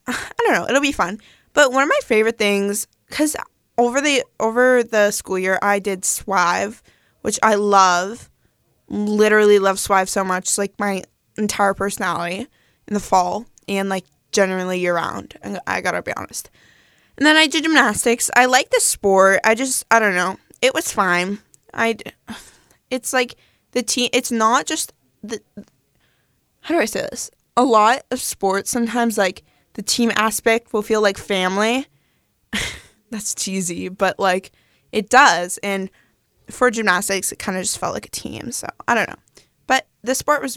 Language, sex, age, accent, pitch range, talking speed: English, female, 10-29, American, 195-250 Hz, 170 wpm